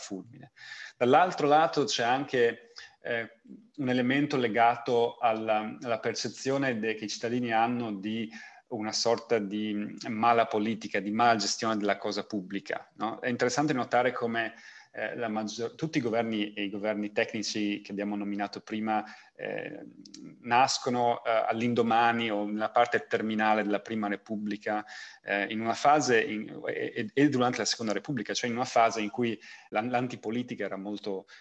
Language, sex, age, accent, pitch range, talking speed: Italian, male, 30-49, native, 105-120 Hz, 140 wpm